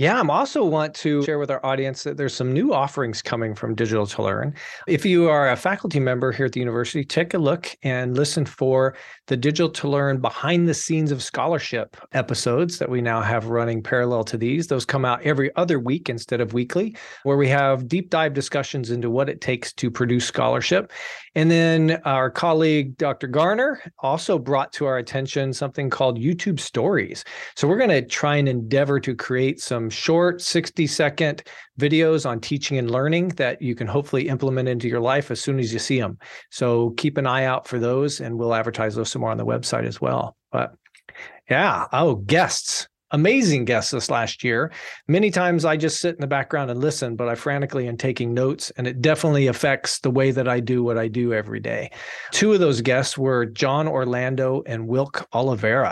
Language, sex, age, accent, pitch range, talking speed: English, male, 40-59, American, 125-155 Hz, 205 wpm